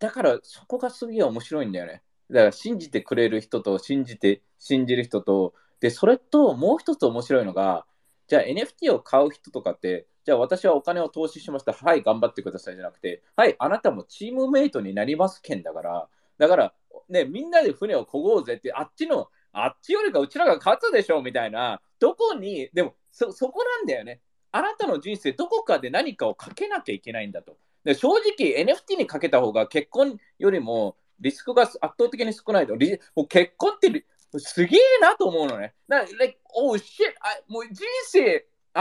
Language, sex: Japanese, male